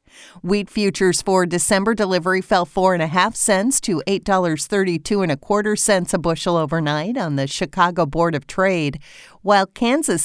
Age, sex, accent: 40-59, female, American